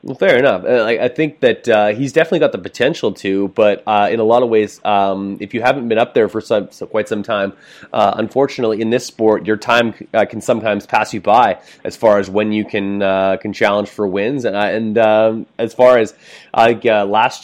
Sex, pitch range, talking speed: male, 100-115 Hz, 230 wpm